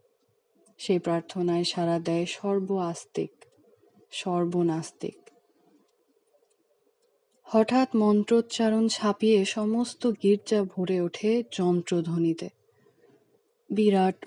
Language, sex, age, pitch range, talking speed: English, female, 30-49, 185-225 Hz, 70 wpm